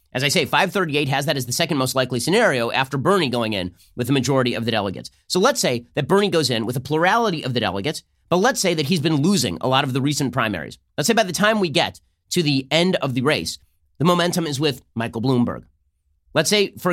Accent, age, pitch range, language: American, 30-49, 120-160 Hz, English